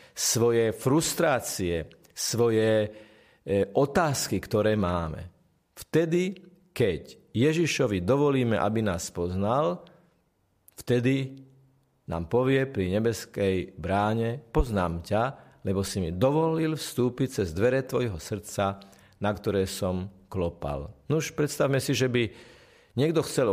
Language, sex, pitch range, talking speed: Slovak, male, 100-130 Hz, 110 wpm